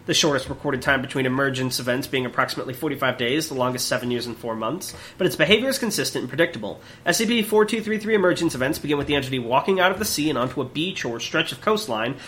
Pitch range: 130-180 Hz